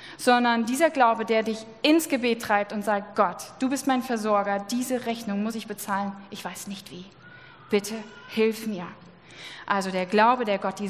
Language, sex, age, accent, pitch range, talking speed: German, female, 20-39, German, 210-260 Hz, 180 wpm